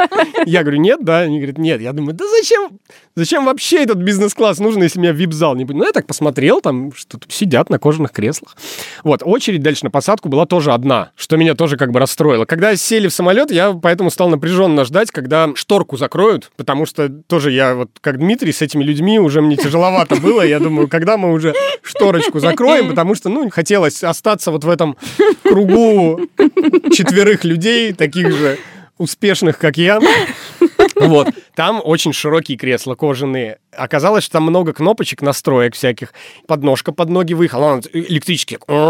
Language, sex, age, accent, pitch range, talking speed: Russian, male, 30-49, native, 150-200 Hz, 175 wpm